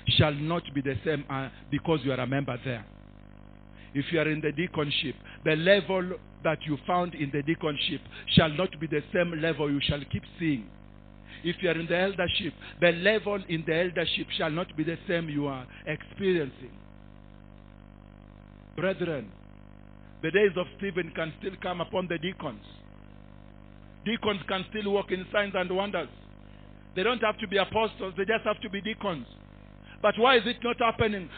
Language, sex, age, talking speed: English, male, 50-69, 175 wpm